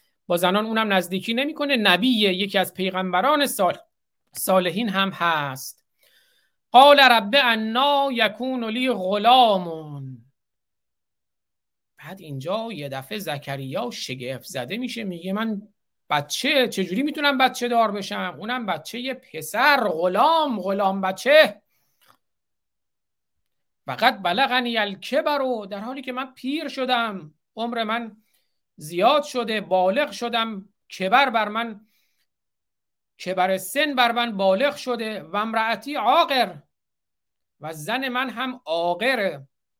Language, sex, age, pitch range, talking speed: Persian, male, 50-69, 185-250 Hz, 110 wpm